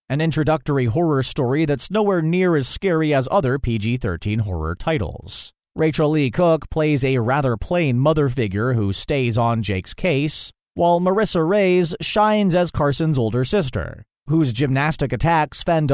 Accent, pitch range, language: American, 125-160 Hz, English